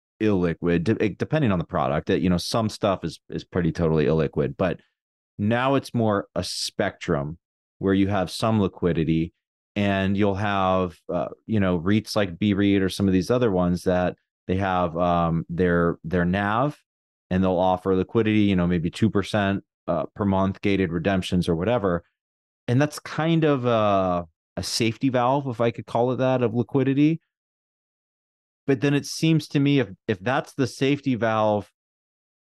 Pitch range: 90-115 Hz